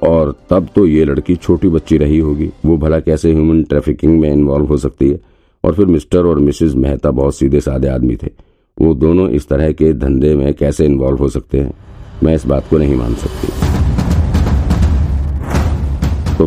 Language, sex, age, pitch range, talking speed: Hindi, male, 50-69, 70-80 Hz, 180 wpm